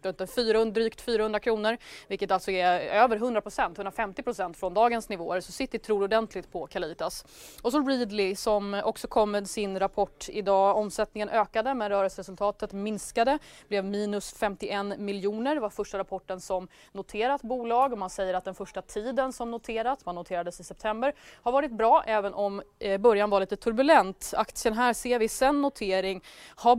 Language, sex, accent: English, female, Swedish